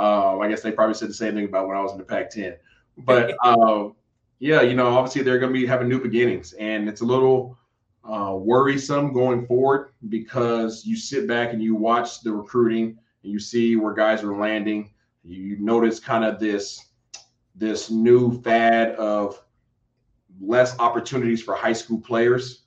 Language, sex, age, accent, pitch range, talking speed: English, male, 20-39, American, 105-120 Hz, 180 wpm